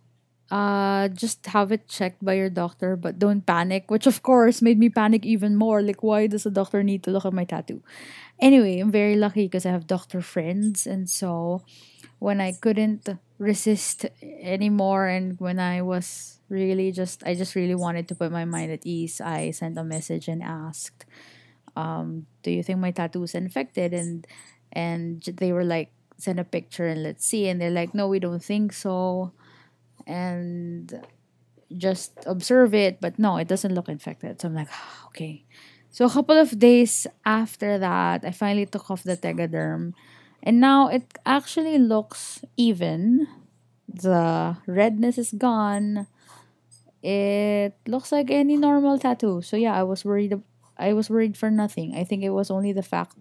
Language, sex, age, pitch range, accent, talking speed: English, female, 20-39, 175-210 Hz, Filipino, 175 wpm